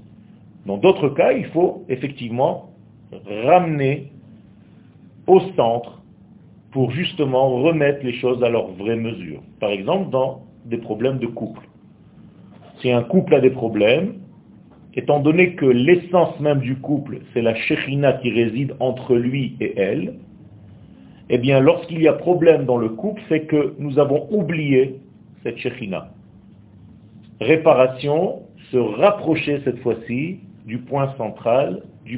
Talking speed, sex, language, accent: 135 wpm, male, French, French